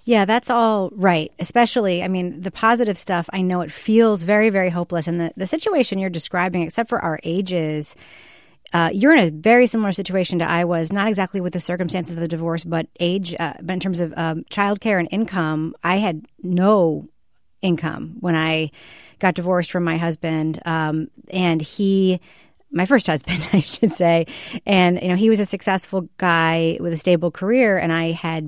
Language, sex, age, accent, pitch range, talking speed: English, female, 30-49, American, 165-195 Hz, 195 wpm